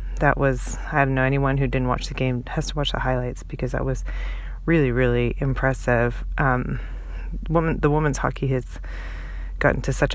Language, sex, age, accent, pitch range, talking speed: English, female, 30-49, American, 125-140 Hz, 175 wpm